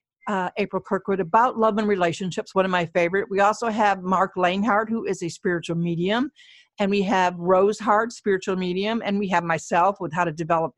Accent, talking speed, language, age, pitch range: American, 200 wpm, English, 50-69, 180-235 Hz